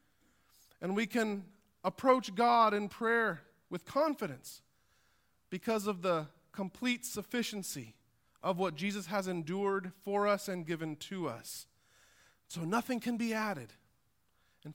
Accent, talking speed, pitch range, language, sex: American, 125 wpm, 165-240 Hz, English, male